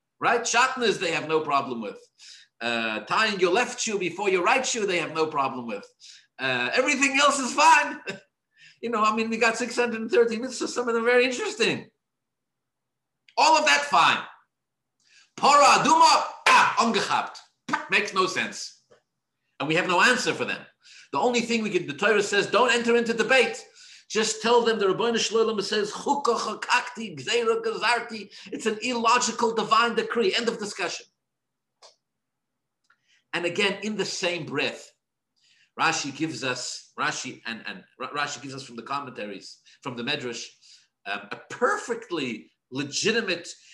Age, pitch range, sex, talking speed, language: 50-69, 180-260 Hz, male, 145 wpm, English